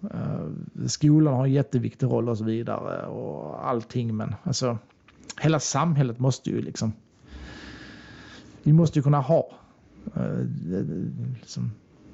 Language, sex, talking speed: Swedish, male, 115 wpm